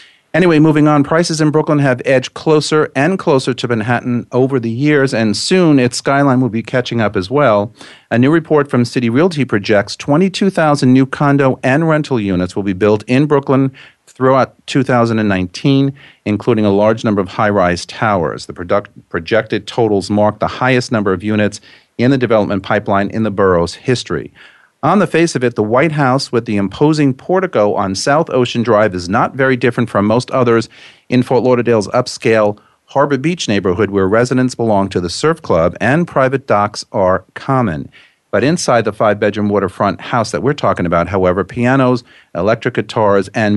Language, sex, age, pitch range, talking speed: English, male, 40-59, 105-135 Hz, 175 wpm